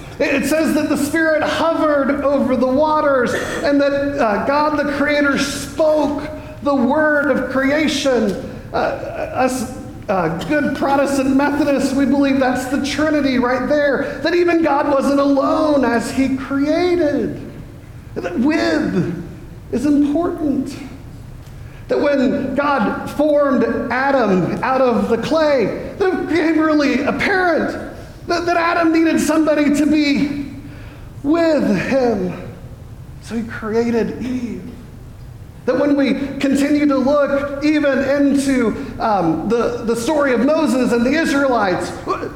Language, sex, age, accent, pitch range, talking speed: English, male, 40-59, American, 255-300 Hz, 125 wpm